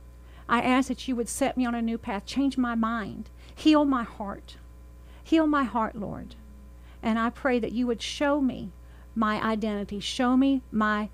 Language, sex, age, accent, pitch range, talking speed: English, female, 50-69, American, 190-245 Hz, 185 wpm